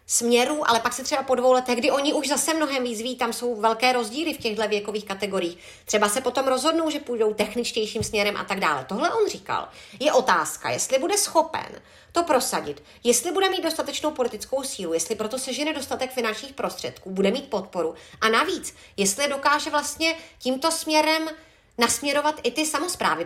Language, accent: Czech, native